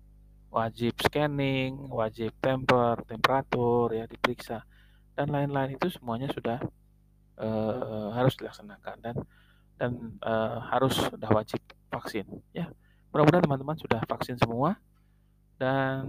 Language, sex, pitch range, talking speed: Indonesian, male, 115-140 Hz, 110 wpm